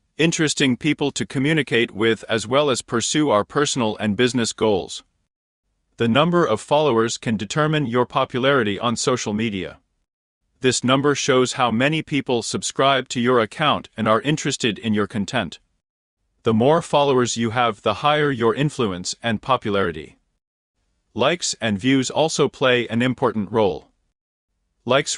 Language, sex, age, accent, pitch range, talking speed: English, male, 40-59, American, 115-145 Hz, 145 wpm